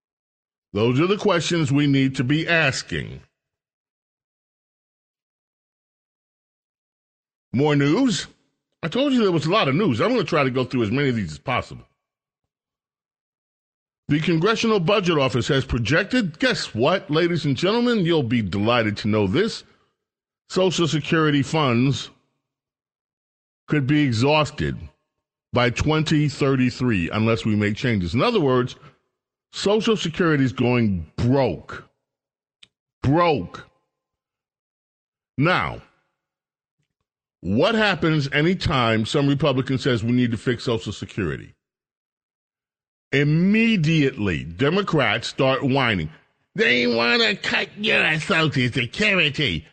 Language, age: English, 40-59